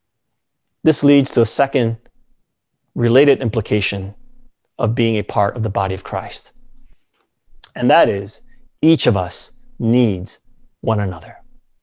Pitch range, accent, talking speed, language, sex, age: 115-165 Hz, American, 125 wpm, English, male, 30-49